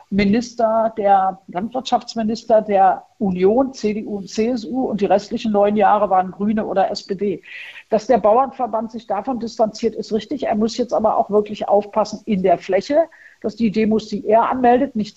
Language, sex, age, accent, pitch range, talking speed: German, female, 50-69, German, 205-235 Hz, 165 wpm